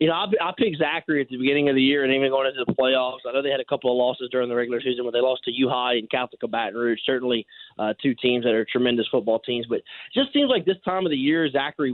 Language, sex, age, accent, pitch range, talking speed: English, male, 20-39, American, 135-160 Hz, 295 wpm